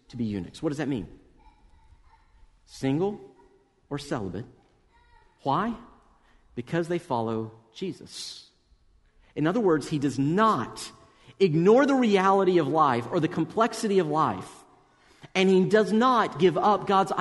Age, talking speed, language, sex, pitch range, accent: 50-69, 130 wpm, English, male, 130-190 Hz, American